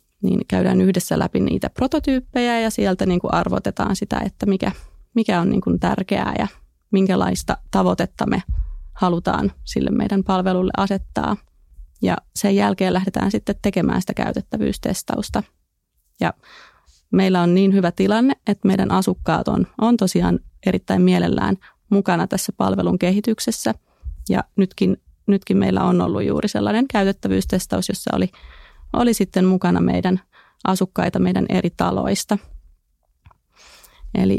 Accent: native